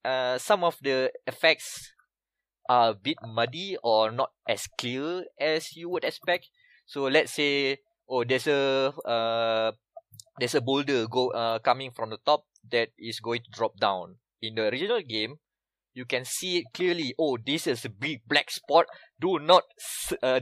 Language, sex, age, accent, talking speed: English, male, 20-39, Malaysian, 170 wpm